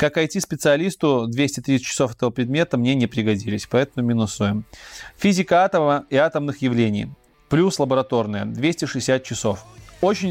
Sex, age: male, 20-39